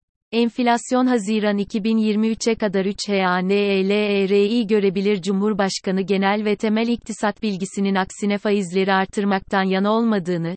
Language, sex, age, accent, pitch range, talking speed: Turkish, female, 30-49, native, 195-220 Hz, 100 wpm